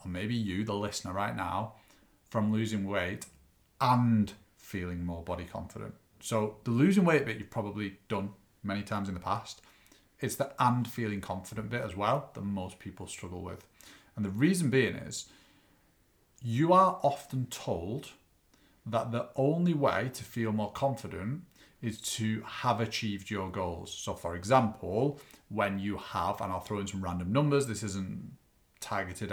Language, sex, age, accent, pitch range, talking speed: English, male, 40-59, British, 100-135 Hz, 165 wpm